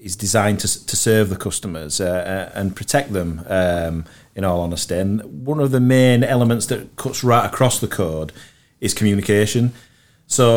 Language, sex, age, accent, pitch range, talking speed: English, male, 40-59, British, 90-110 Hz, 170 wpm